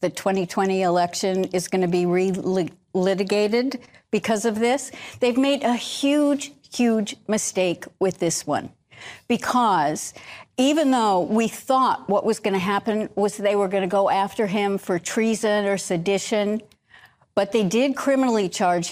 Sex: female